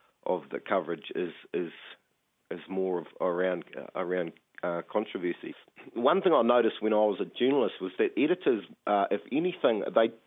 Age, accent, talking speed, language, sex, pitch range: 30-49, Australian, 170 wpm, English, male, 95-150 Hz